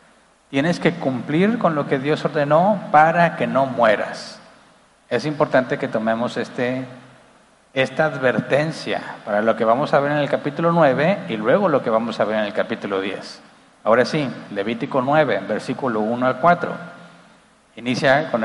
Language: Spanish